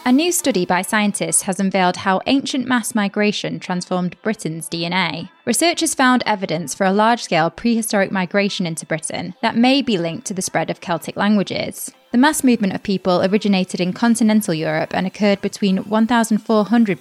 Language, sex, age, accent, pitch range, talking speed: English, female, 20-39, British, 175-230 Hz, 165 wpm